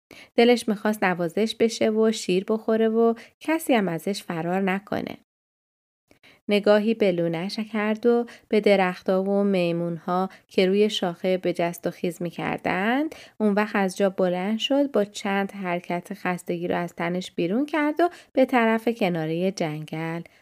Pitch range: 175-220 Hz